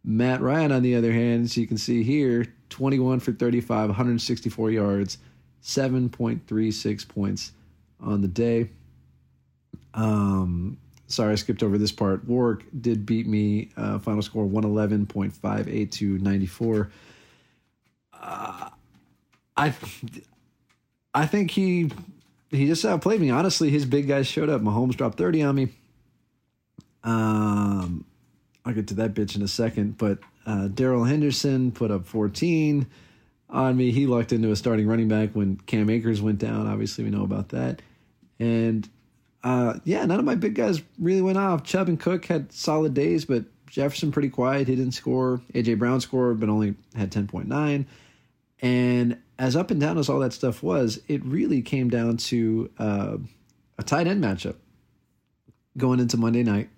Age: 40-59